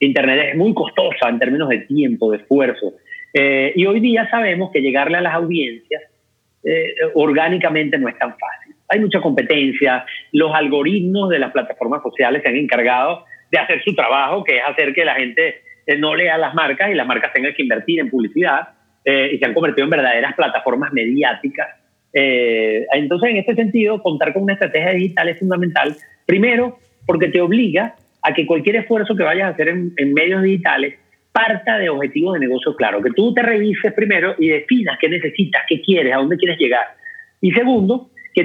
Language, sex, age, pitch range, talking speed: English, male, 30-49, 155-225 Hz, 190 wpm